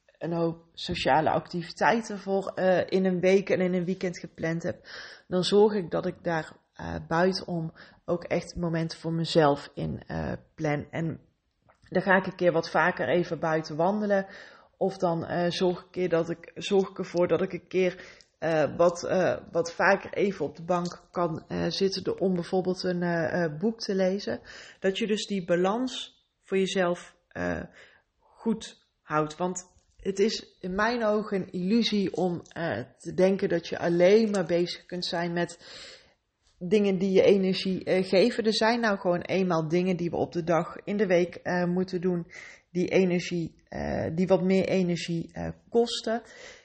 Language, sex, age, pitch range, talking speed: Dutch, female, 20-39, 170-195 Hz, 180 wpm